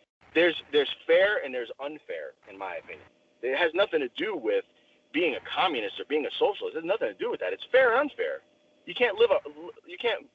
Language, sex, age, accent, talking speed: English, male, 30-49, American, 225 wpm